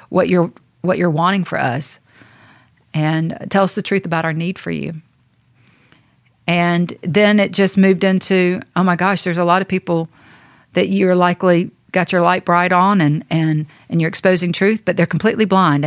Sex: female